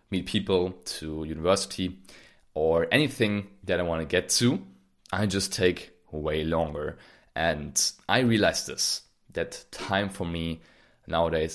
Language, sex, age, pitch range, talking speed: English, male, 20-39, 80-95 Hz, 135 wpm